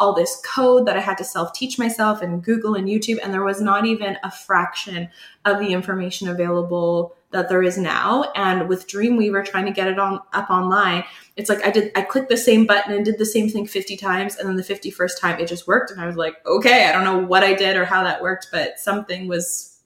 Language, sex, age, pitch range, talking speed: English, female, 20-39, 180-215 Hz, 240 wpm